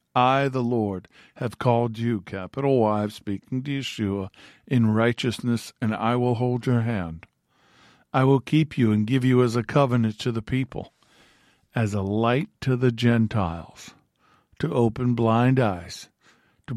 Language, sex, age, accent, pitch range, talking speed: English, male, 50-69, American, 105-125 Hz, 155 wpm